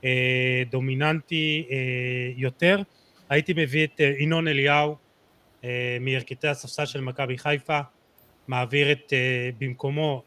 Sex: male